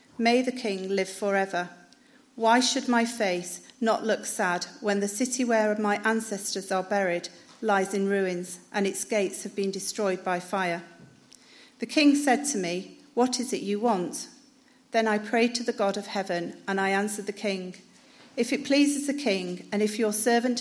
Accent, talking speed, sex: British, 185 wpm, female